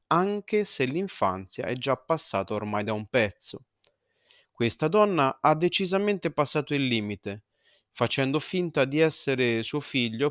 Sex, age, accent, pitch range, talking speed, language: male, 30-49, native, 125-185 Hz, 135 wpm, Italian